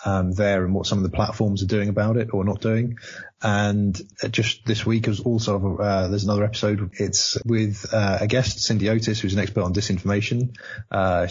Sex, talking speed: male, 200 wpm